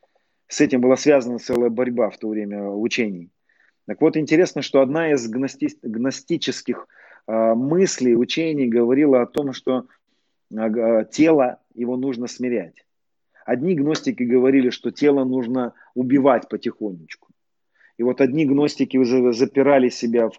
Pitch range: 120-140 Hz